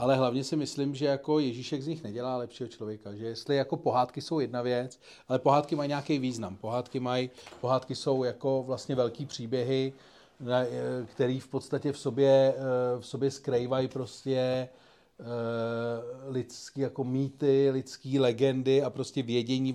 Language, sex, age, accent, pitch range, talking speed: Czech, male, 40-59, native, 120-130 Hz, 150 wpm